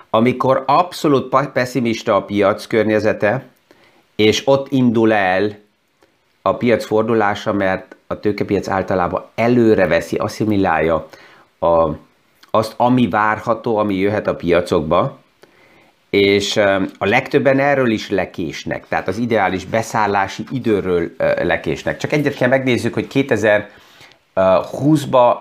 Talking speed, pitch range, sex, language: 105 wpm, 100-125 Hz, male, Hungarian